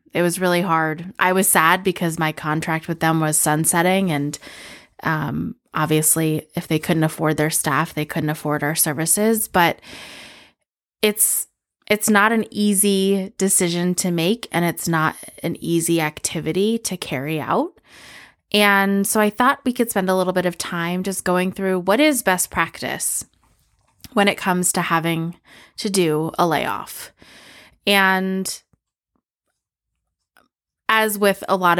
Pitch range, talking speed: 165-200 Hz, 150 wpm